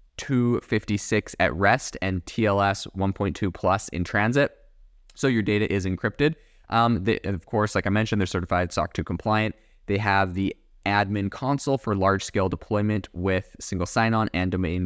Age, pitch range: 20-39, 95-115 Hz